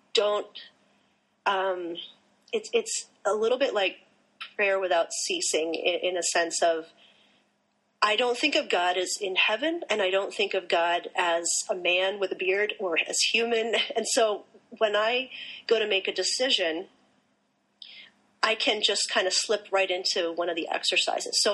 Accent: American